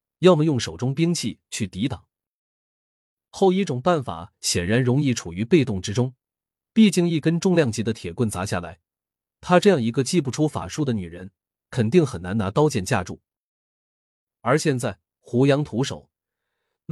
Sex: male